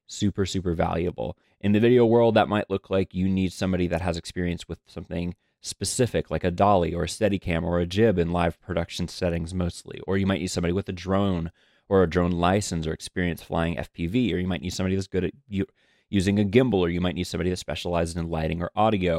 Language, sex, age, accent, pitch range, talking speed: English, male, 30-49, American, 85-100 Hz, 230 wpm